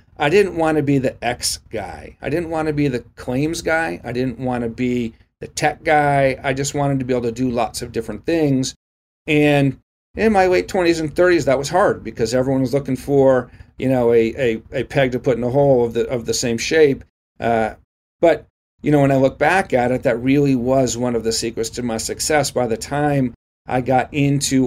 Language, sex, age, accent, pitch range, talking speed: English, male, 40-59, American, 115-140 Hz, 230 wpm